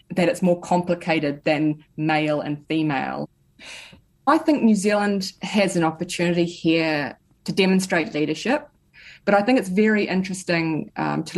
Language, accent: English, Australian